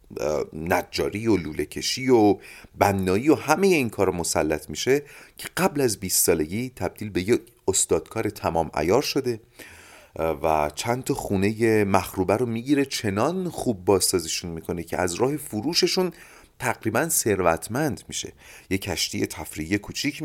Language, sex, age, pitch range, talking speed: Persian, male, 30-49, 90-125 Hz, 135 wpm